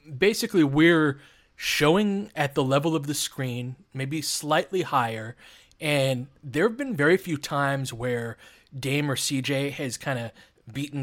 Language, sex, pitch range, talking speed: English, male, 130-155 Hz, 145 wpm